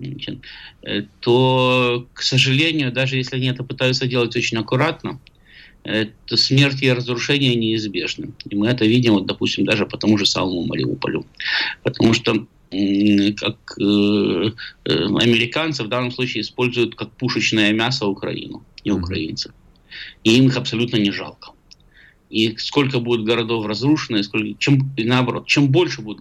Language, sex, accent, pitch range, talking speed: Russian, male, native, 105-130 Hz, 135 wpm